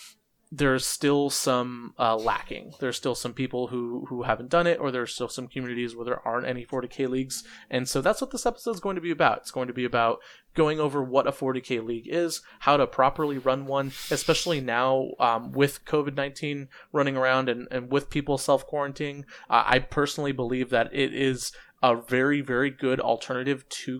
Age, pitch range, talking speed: 20-39, 125-145 Hz, 195 wpm